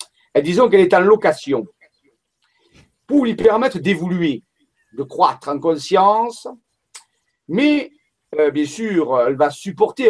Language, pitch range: French, 155-230 Hz